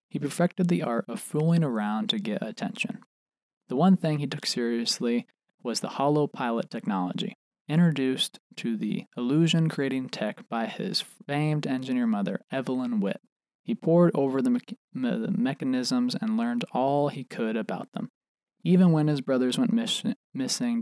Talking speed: 160 wpm